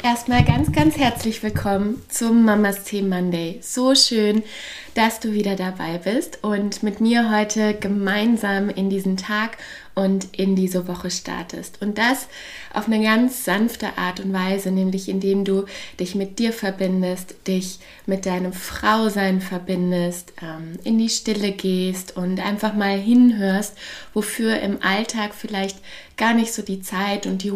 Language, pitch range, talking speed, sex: German, 190-220 Hz, 150 wpm, female